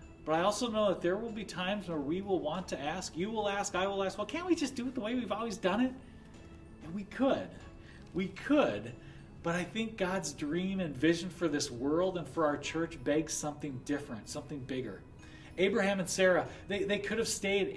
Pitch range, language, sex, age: 135-185 Hz, English, male, 40-59